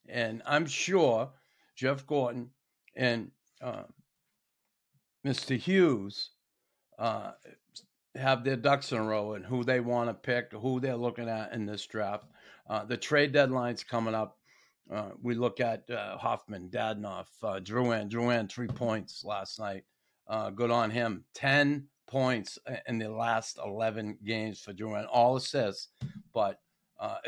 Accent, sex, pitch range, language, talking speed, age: American, male, 110-130 Hz, English, 150 wpm, 50-69